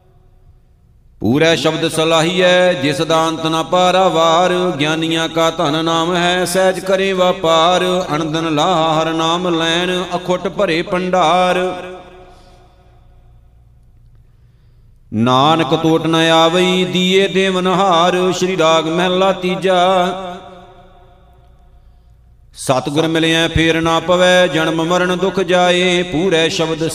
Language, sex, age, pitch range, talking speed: Punjabi, male, 50-69, 160-180 Hz, 90 wpm